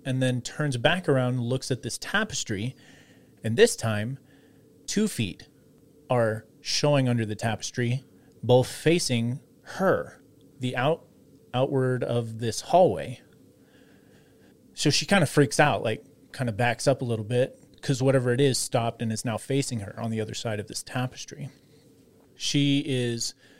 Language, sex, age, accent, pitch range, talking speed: English, male, 30-49, American, 120-145 Hz, 160 wpm